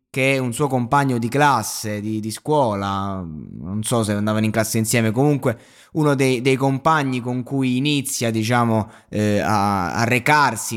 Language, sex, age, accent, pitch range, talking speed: Italian, male, 20-39, native, 120-150 Hz, 165 wpm